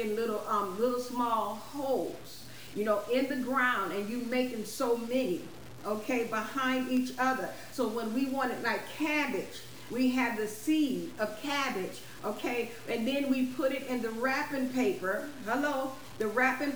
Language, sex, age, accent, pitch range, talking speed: English, female, 40-59, American, 225-260 Hz, 160 wpm